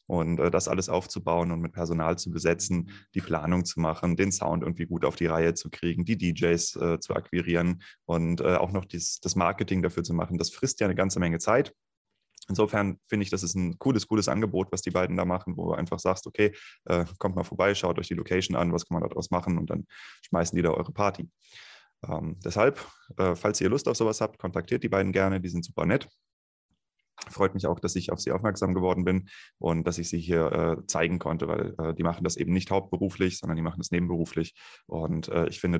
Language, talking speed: German, 225 wpm